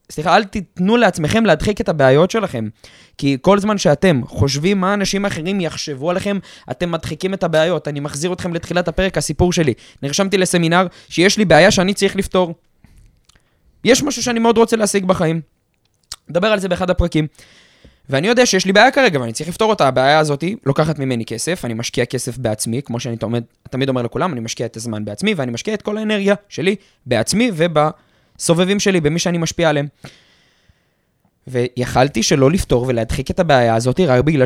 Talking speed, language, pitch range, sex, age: 165 wpm, Hebrew, 125-180 Hz, male, 20-39